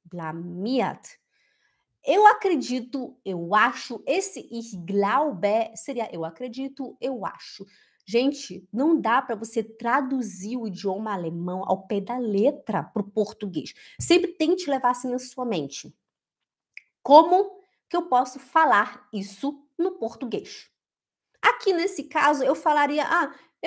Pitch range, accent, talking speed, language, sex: 200-295 Hz, Brazilian, 125 wpm, Portuguese, female